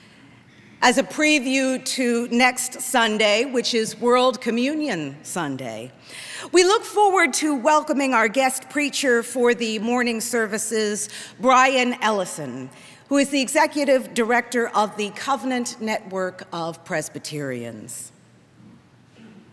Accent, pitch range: American, 210-285 Hz